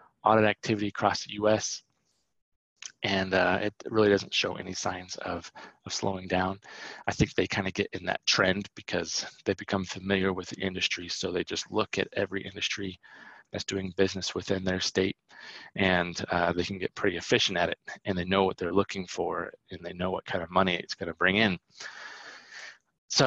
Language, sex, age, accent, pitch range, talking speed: English, male, 30-49, American, 95-115 Hz, 195 wpm